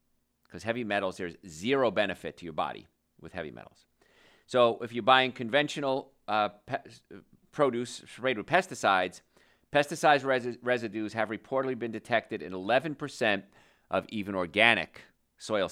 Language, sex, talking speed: English, male, 130 wpm